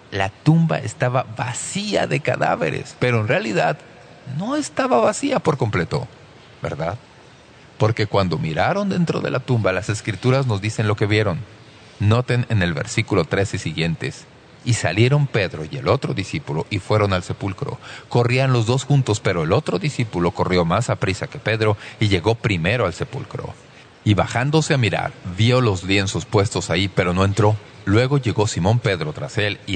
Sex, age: male, 40-59